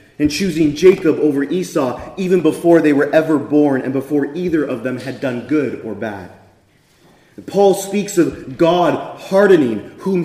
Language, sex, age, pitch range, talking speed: English, male, 30-49, 165-220 Hz, 160 wpm